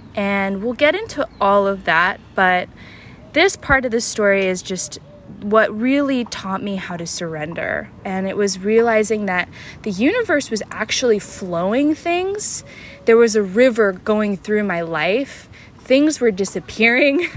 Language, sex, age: English, female, 10-29